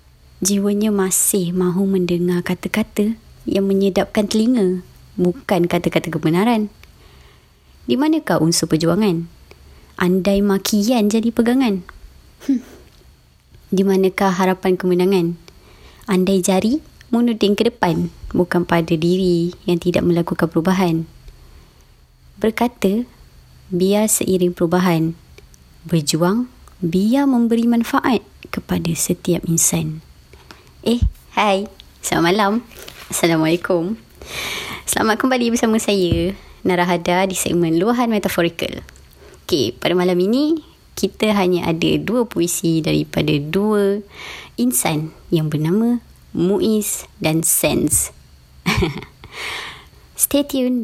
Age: 20-39